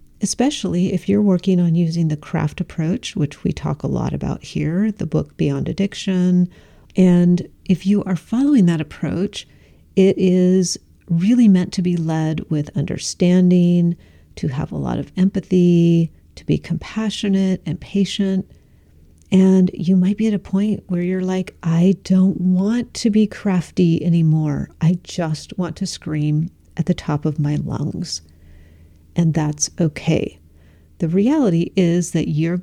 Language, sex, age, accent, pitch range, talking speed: English, female, 50-69, American, 155-190 Hz, 155 wpm